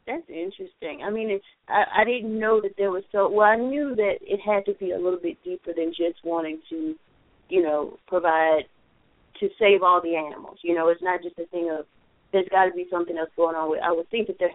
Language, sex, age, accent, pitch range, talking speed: English, female, 30-49, American, 165-200 Hz, 250 wpm